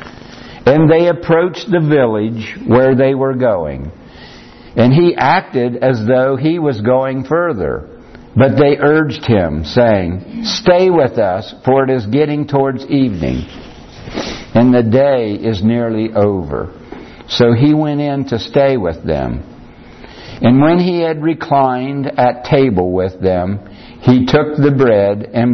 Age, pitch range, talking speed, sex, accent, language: 60-79, 115-145 Hz, 140 wpm, male, American, English